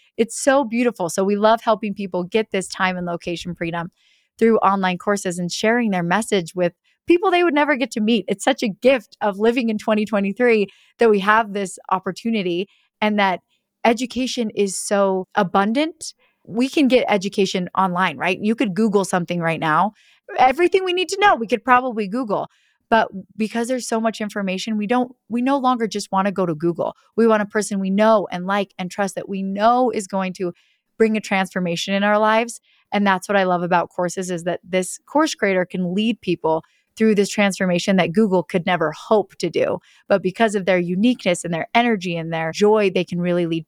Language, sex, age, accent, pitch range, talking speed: English, female, 30-49, American, 185-230 Hz, 200 wpm